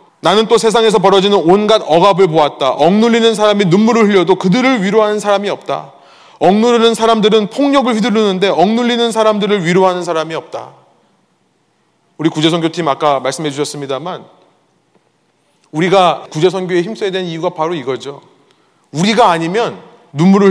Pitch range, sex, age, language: 175-225 Hz, male, 30-49, Korean